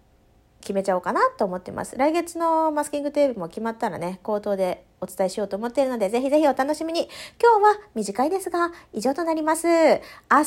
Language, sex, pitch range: Japanese, female, 225-335 Hz